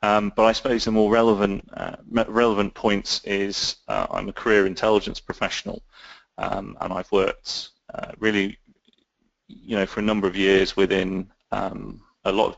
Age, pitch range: 30-49, 95-110 Hz